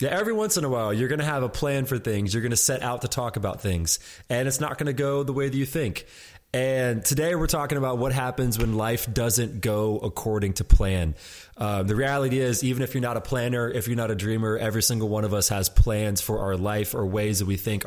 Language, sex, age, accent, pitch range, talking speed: English, male, 20-39, American, 95-120 Hz, 260 wpm